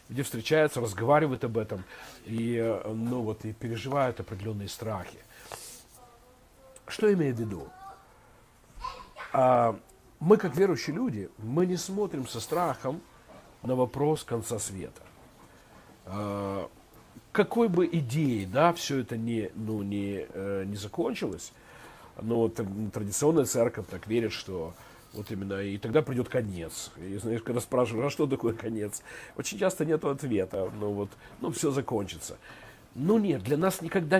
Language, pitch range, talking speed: Russian, 110-160 Hz, 130 wpm